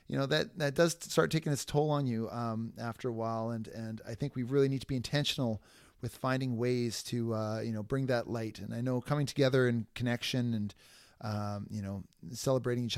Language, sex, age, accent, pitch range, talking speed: English, male, 30-49, American, 115-145 Hz, 220 wpm